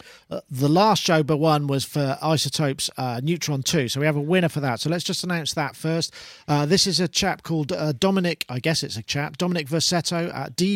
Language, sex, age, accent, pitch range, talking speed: English, male, 40-59, British, 135-170 Hz, 240 wpm